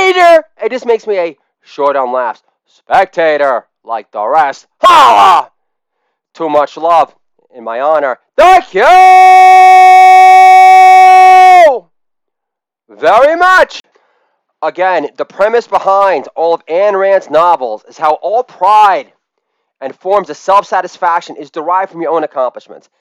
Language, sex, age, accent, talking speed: English, male, 30-49, American, 125 wpm